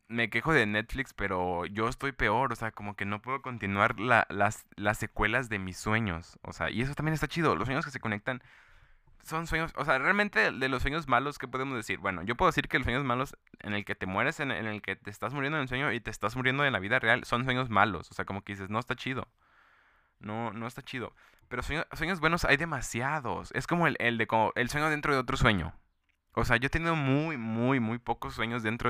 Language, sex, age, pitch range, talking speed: Spanish, male, 20-39, 100-130 Hz, 250 wpm